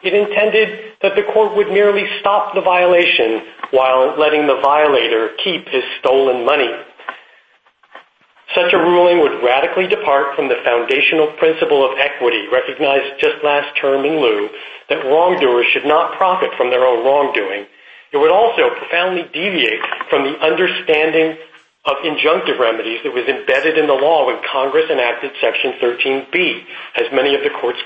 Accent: American